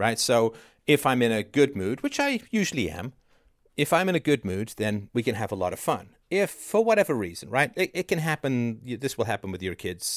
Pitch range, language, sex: 100-135 Hz, English, male